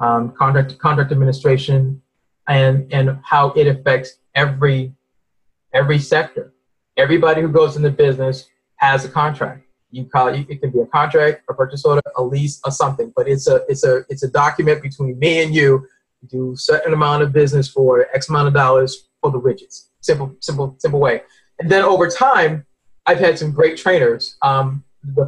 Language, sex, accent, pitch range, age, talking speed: English, male, American, 135-160 Hz, 20-39, 185 wpm